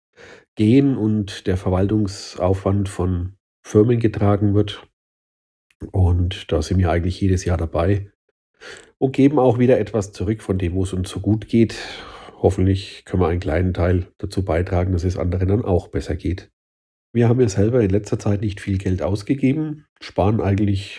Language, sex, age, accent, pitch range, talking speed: German, male, 40-59, German, 95-110 Hz, 165 wpm